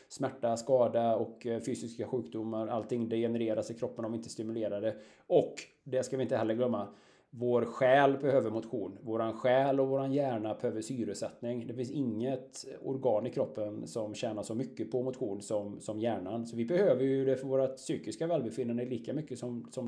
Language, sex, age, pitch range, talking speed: Swedish, male, 20-39, 115-135 Hz, 175 wpm